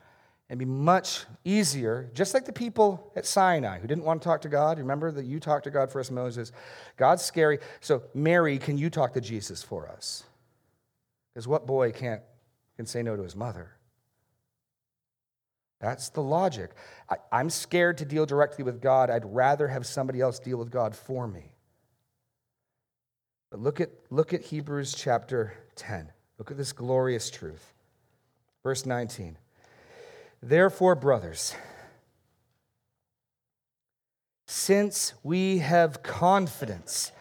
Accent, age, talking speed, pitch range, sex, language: American, 40-59, 145 wpm, 120-165 Hz, male, English